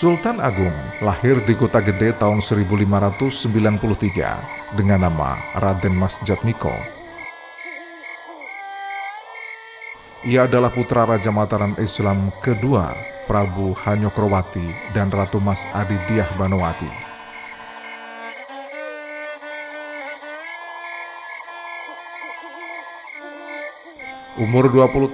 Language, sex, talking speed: Indonesian, male, 70 wpm